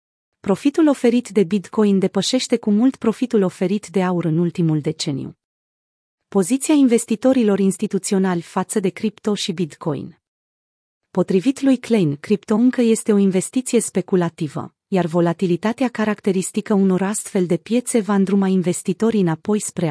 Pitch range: 180-225 Hz